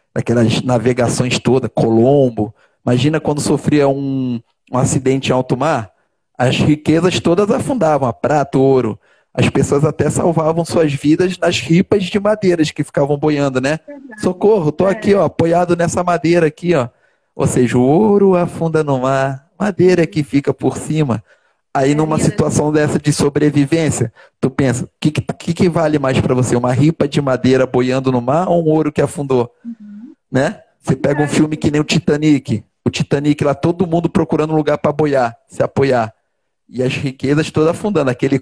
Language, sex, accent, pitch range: Portuguese, male, Brazilian, 130-165 Hz